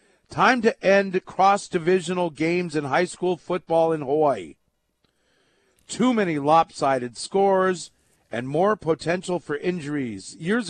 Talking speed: 125 wpm